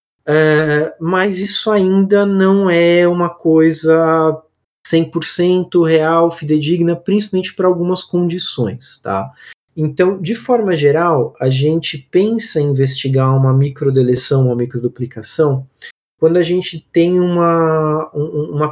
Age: 20-39